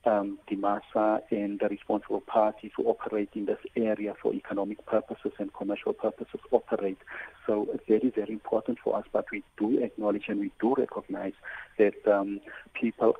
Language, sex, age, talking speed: English, male, 50-69, 170 wpm